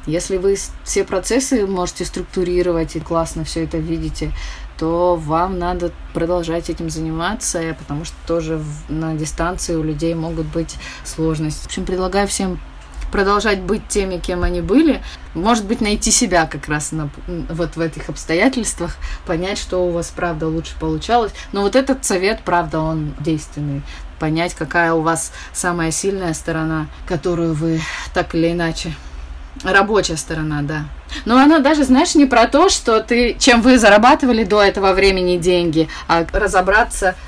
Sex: female